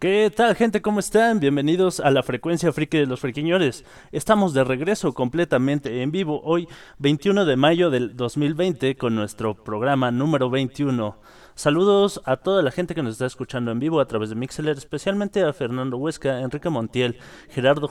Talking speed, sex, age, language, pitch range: 175 wpm, male, 30-49, Spanish, 120-155 Hz